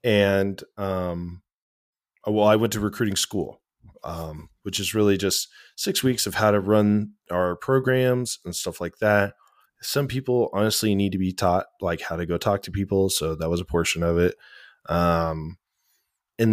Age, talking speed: 20-39, 175 wpm